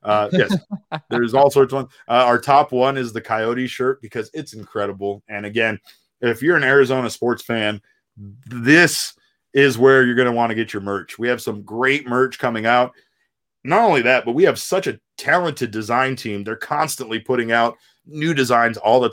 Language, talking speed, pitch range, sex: English, 200 wpm, 115-150 Hz, male